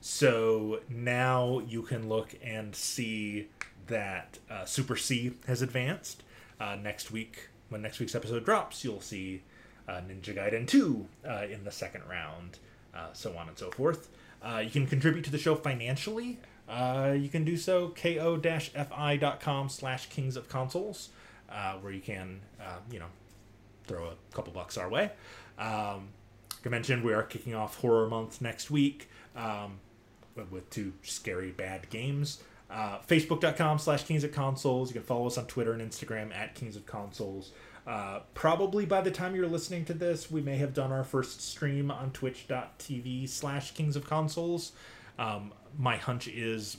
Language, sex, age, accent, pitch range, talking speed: English, male, 30-49, American, 105-145 Hz, 170 wpm